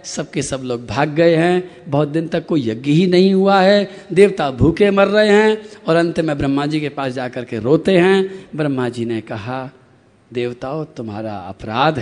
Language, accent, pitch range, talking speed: Hindi, native, 130-200 Hz, 190 wpm